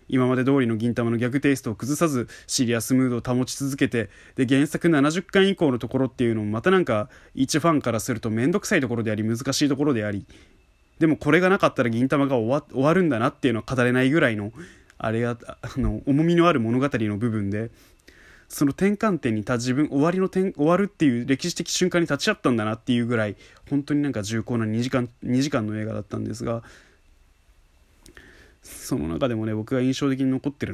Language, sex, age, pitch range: Japanese, male, 20-39, 105-140 Hz